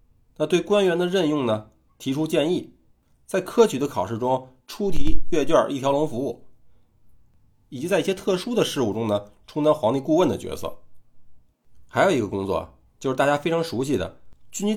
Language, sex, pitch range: Chinese, male, 100-170 Hz